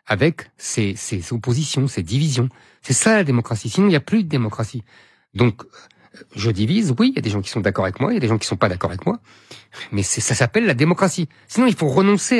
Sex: male